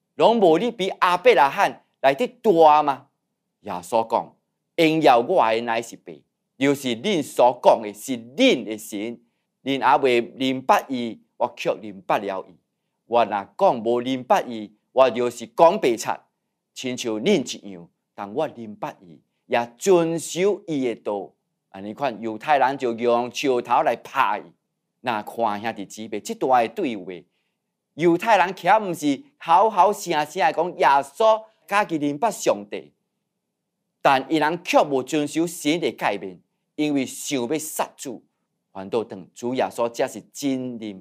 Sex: male